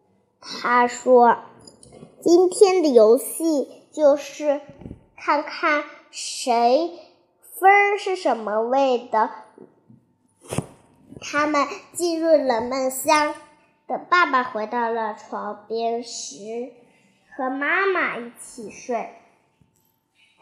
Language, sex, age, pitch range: Chinese, male, 10-29, 255-335 Hz